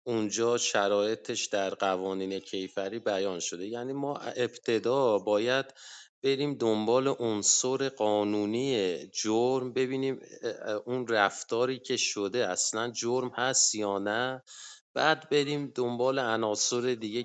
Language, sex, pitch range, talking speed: English, male, 105-125 Hz, 110 wpm